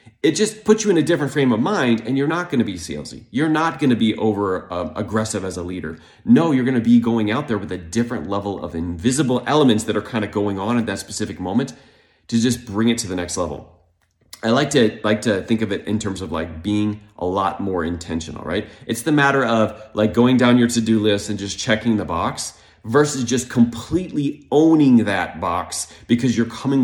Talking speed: 230 wpm